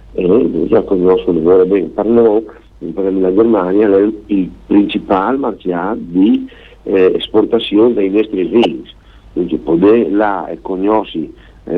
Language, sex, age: Italian, male, 50-69